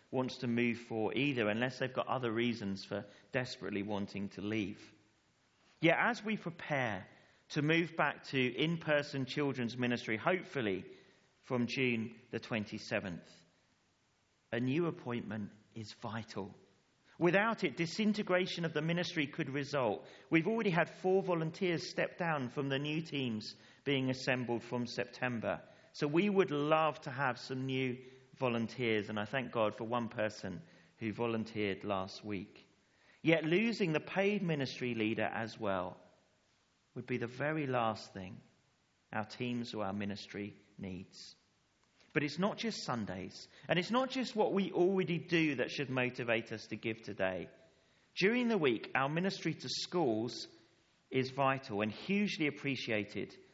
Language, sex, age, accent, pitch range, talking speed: English, male, 40-59, British, 110-160 Hz, 150 wpm